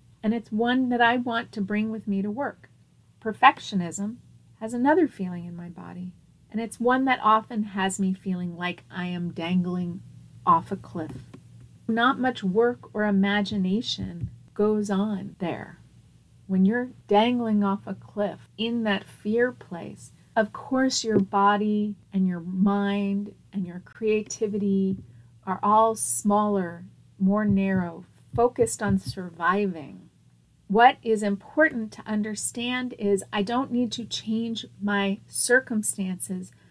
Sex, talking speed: female, 135 wpm